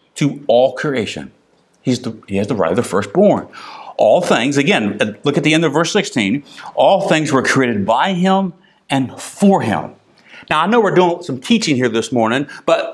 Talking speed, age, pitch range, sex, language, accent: 195 wpm, 50-69, 135-200 Hz, male, English, American